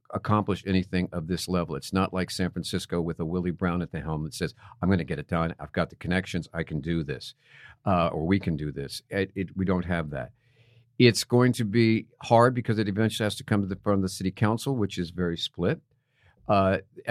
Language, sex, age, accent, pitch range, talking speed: English, male, 50-69, American, 100-135 Hz, 230 wpm